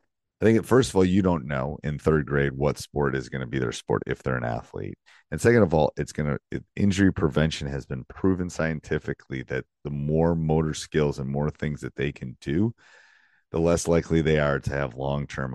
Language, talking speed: English, 225 wpm